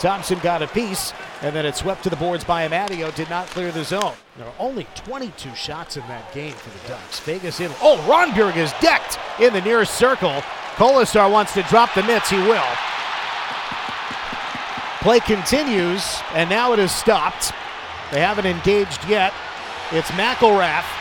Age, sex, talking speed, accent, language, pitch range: 50-69, male, 170 wpm, American, English, 175-225 Hz